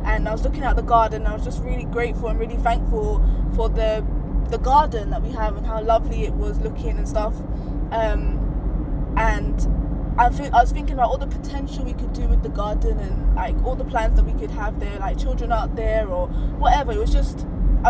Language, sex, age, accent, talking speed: English, female, 20-39, British, 230 wpm